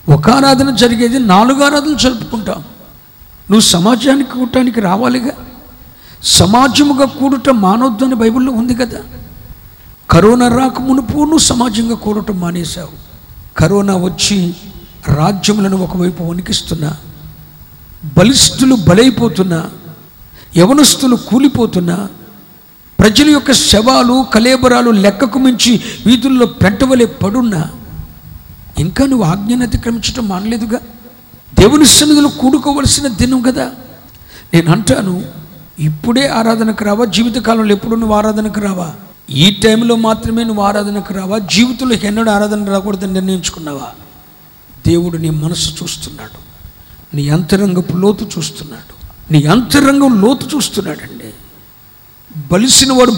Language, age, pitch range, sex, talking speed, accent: Telugu, 50-69, 180-250 Hz, male, 95 wpm, native